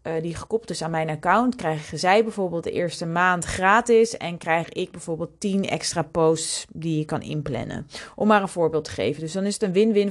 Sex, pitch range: female, 170-220 Hz